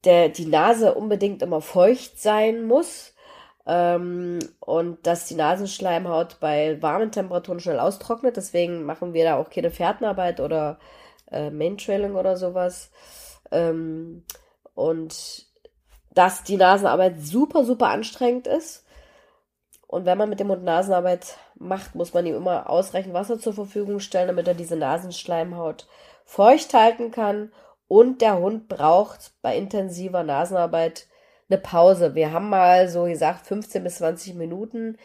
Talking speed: 140 wpm